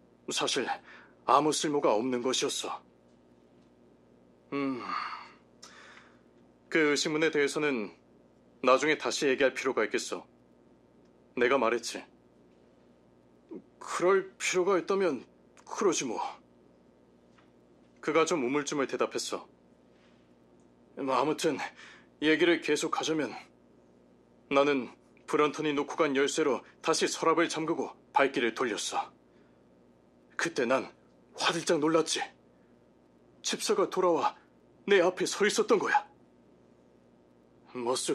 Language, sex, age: Korean, male, 30-49